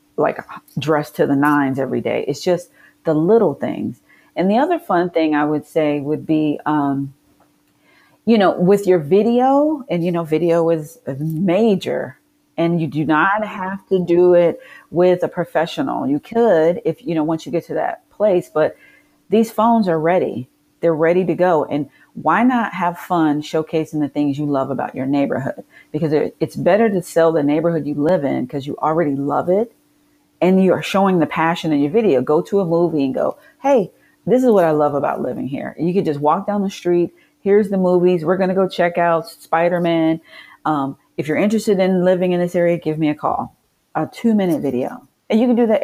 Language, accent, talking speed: English, American, 200 wpm